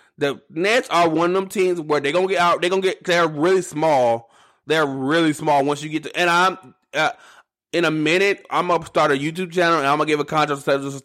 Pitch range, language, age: 130-160 Hz, English, 20-39